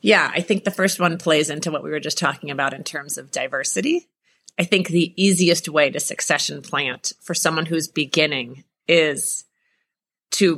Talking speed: 180 wpm